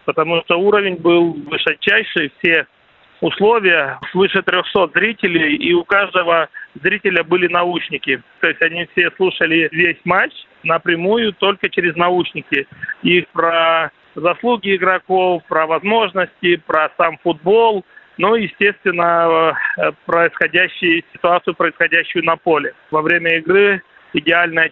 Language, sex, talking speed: Russian, male, 115 wpm